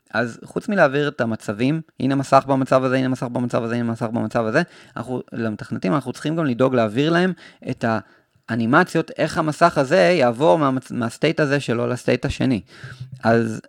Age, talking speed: 20-39, 165 wpm